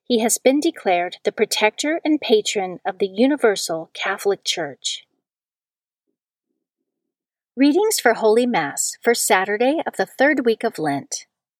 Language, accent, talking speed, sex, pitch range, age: English, American, 130 wpm, female, 190-245 Hz, 40-59